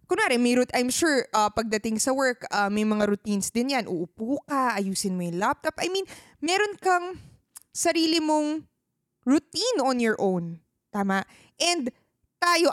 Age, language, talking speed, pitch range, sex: 20-39, Filipino, 155 wpm, 225-315 Hz, female